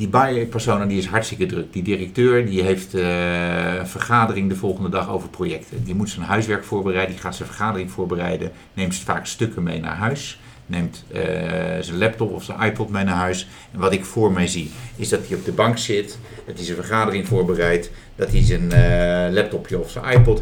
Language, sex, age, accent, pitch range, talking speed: Dutch, male, 50-69, Dutch, 90-110 Hz, 205 wpm